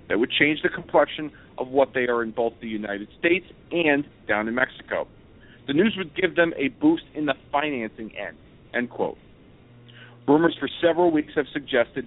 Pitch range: 120-150 Hz